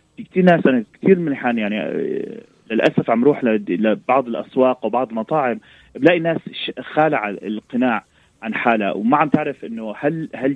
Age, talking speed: 30-49, 155 wpm